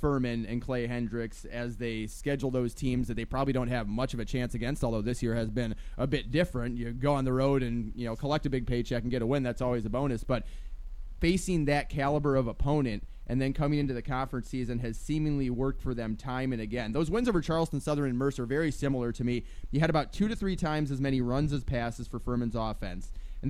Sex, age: male, 20-39